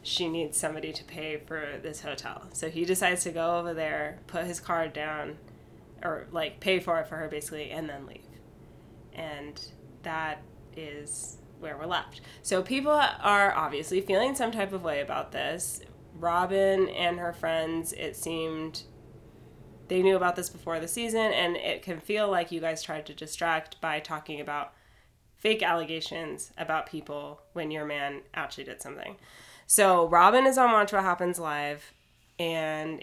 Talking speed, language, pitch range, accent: 165 wpm, English, 155-190 Hz, American